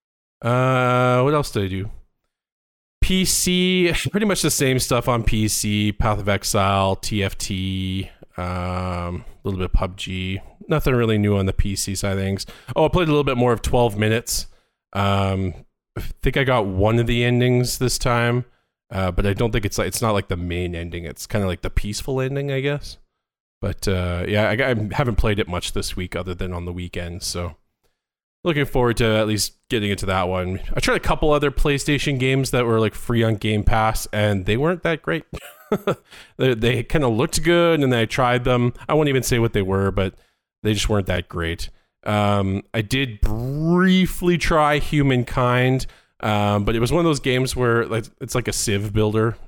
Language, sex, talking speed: English, male, 200 wpm